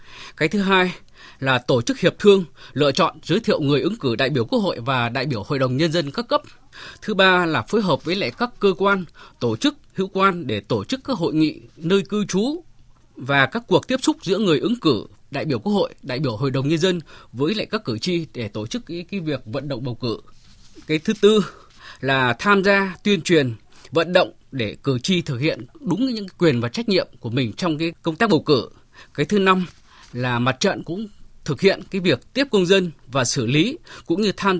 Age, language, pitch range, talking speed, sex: 20-39, Vietnamese, 135-195 Hz, 230 wpm, male